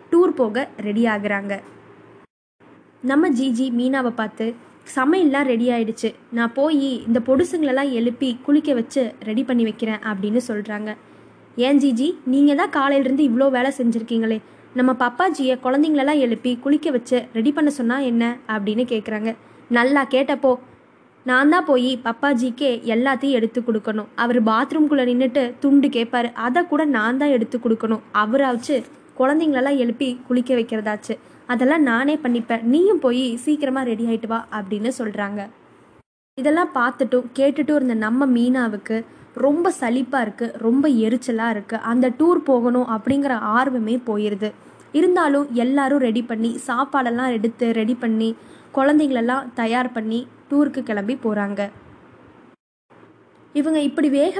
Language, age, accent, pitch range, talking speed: Tamil, 20-39, native, 230-275 Hz, 125 wpm